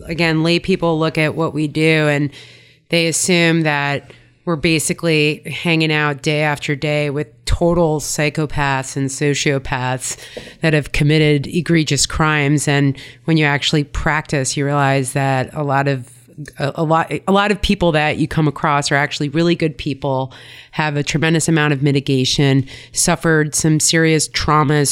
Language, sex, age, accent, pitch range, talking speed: English, female, 30-49, American, 140-165 Hz, 160 wpm